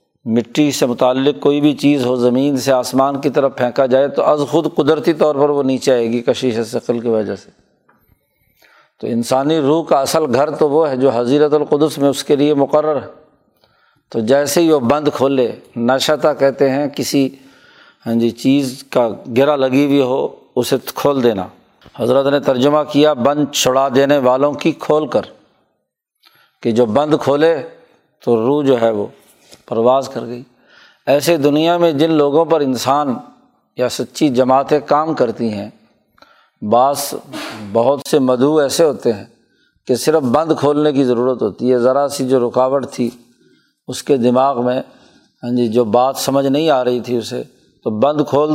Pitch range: 125-145 Hz